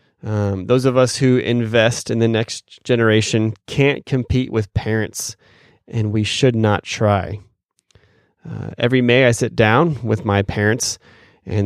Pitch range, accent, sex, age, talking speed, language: 105-120 Hz, American, male, 20-39, 150 wpm, English